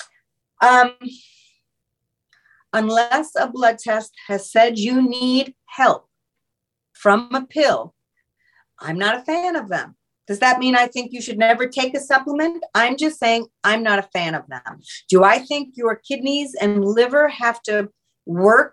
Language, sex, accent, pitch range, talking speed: English, female, American, 185-260 Hz, 155 wpm